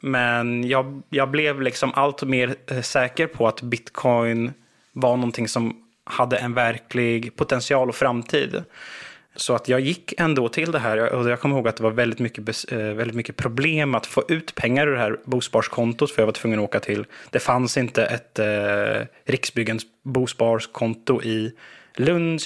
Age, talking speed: 20-39, 175 wpm